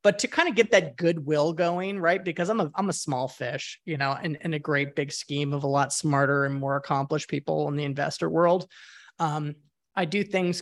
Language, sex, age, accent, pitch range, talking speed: English, male, 30-49, American, 140-170 Hz, 225 wpm